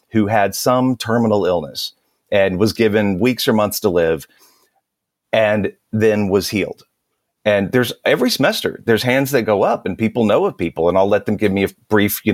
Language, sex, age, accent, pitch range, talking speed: English, male, 40-59, American, 95-115 Hz, 195 wpm